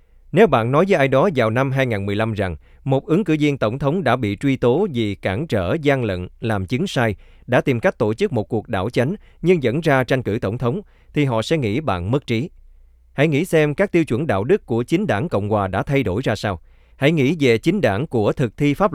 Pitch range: 100-140 Hz